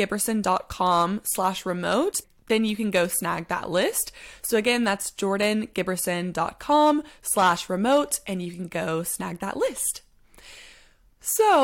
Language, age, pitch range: English, 20-39, 195-285 Hz